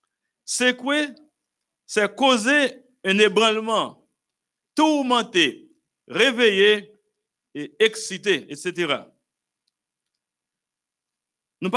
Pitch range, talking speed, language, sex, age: 180-255 Hz, 65 wpm, French, male, 60-79